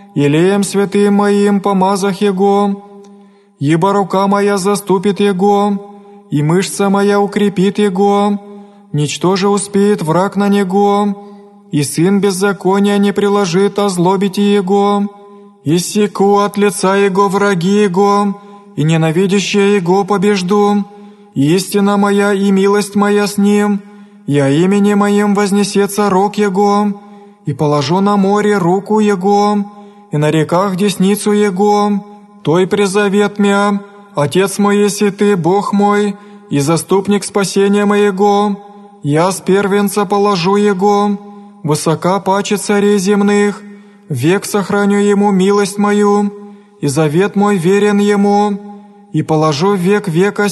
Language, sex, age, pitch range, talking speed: Greek, male, 20-39, 195-205 Hz, 120 wpm